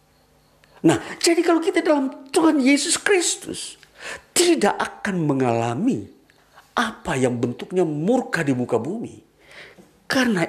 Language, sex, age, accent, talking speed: Indonesian, male, 50-69, native, 110 wpm